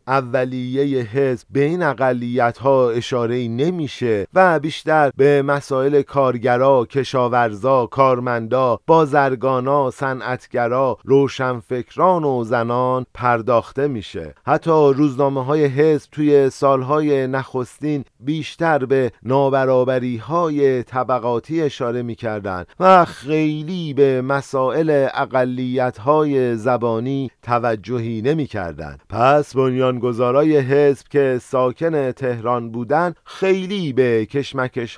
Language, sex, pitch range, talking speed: Persian, male, 120-140 Hz, 95 wpm